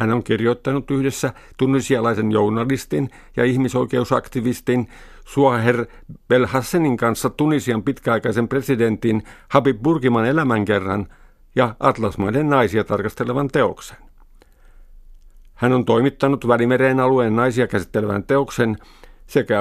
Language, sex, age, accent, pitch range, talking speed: Finnish, male, 50-69, native, 110-135 Hz, 95 wpm